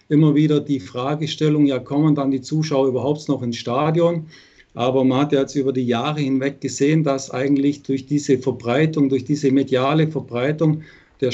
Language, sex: German, male